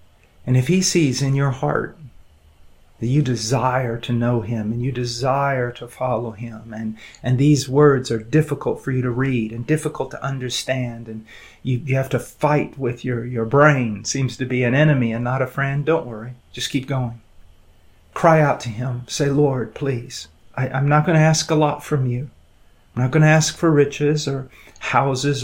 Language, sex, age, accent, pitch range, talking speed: English, male, 40-59, American, 110-140 Hz, 195 wpm